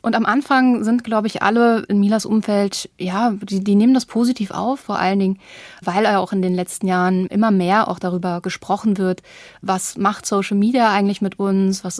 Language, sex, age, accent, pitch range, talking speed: German, female, 20-39, German, 185-210 Hz, 200 wpm